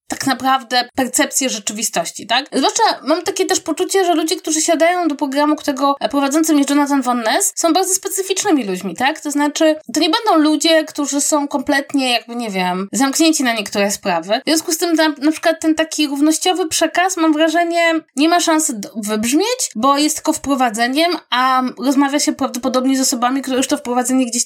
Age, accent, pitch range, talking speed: 20-39, native, 245-335 Hz, 185 wpm